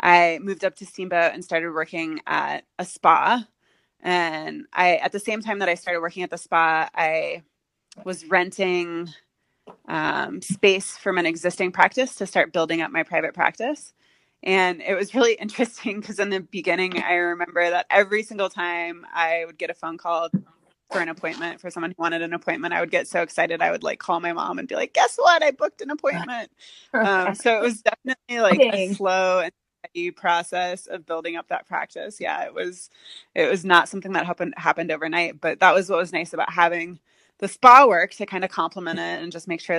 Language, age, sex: English, 20-39, female